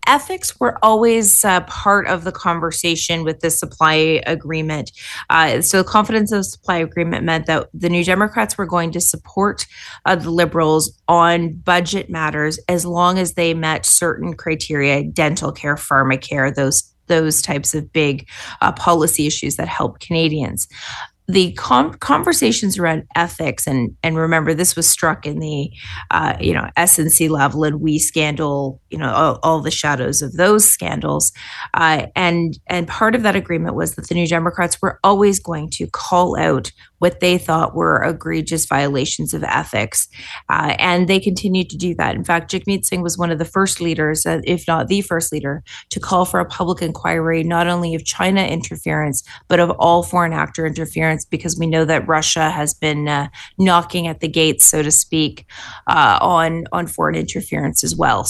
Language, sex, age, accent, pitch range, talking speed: English, female, 30-49, American, 155-180 Hz, 175 wpm